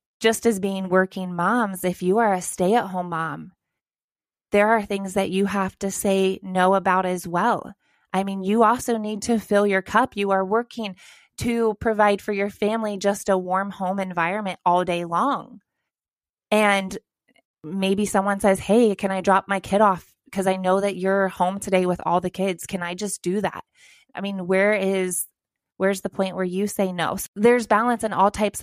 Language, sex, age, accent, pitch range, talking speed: English, female, 20-39, American, 180-205 Hz, 190 wpm